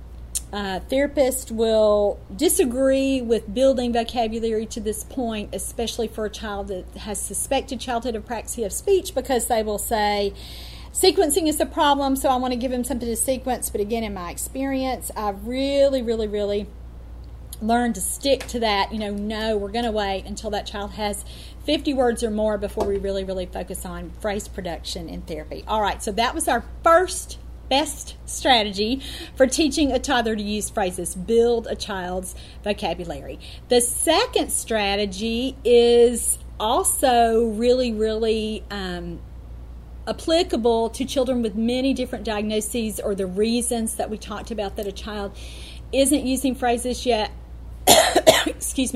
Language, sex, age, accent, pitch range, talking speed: English, female, 40-59, American, 200-260 Hz, 155 wpm